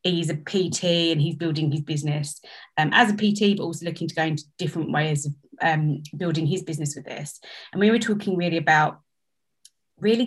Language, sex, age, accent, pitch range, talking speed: English, female, 20-39, British, 155-185 Hz, 200 wpm